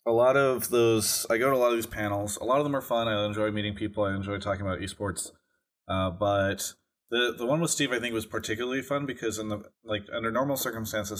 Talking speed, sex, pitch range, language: 245 wpm, male, 100-125 Hz, English